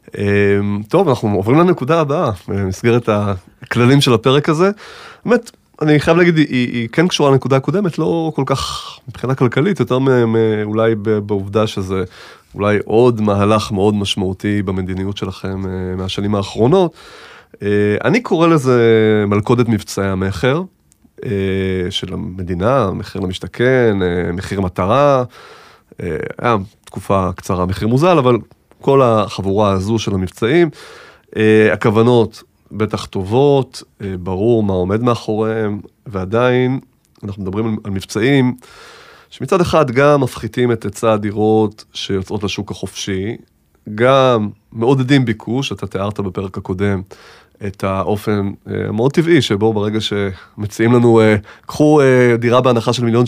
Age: 20-39